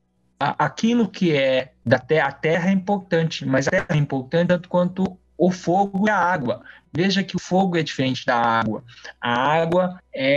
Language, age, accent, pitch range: Portuguese, 20-39, Brazilian, 130-185 Hz